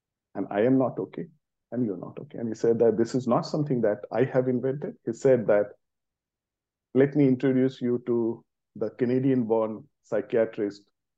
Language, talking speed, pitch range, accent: English, 175 wpm, 100-135 Hz, Indian